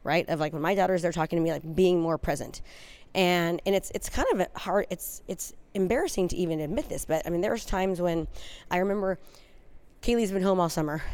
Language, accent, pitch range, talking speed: English, American, 170-200 Hz, 225 wpm